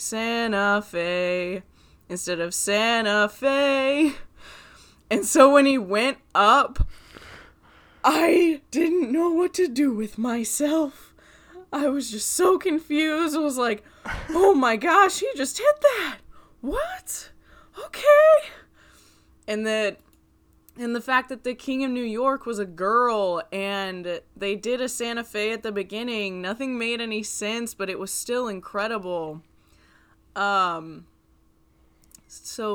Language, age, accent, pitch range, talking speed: English, 20-39, American, 185-255 Hz, 130 wpm